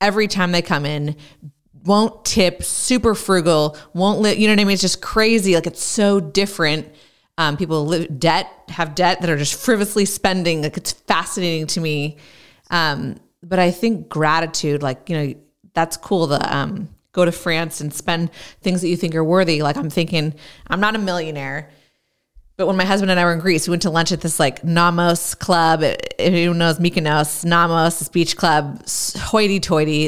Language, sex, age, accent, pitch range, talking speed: English, female, 20-39, American, 155-190 Hz, 190 wpm